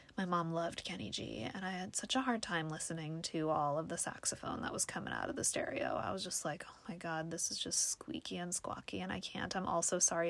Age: 20-39